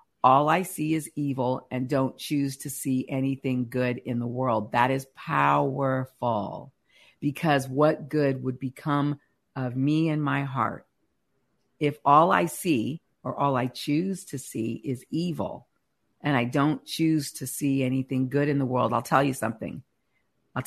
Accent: American